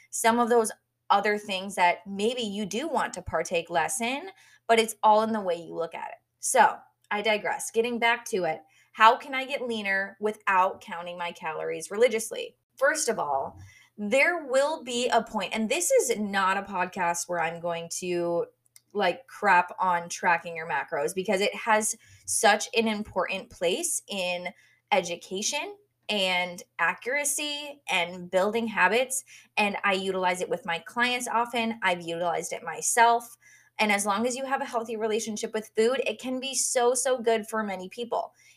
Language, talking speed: English, 175 wpm